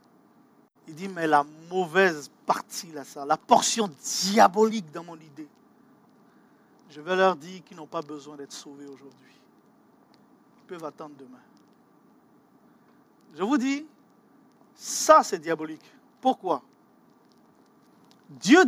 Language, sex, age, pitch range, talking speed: French, male, 50-69, 180-270 Hz, 120 wpm